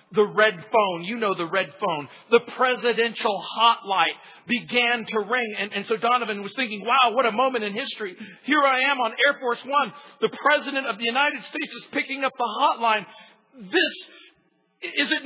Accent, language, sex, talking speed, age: American, English, male, 185 wpm, 50-69